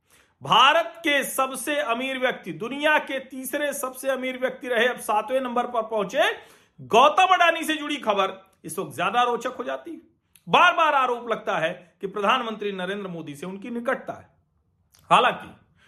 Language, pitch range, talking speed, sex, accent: Hindi, 180-265 Hz, 165 wpm, male, native